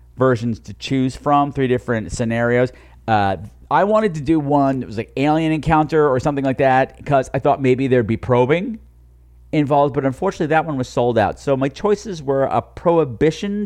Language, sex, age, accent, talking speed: English, male, 40-59, American, 190 wpm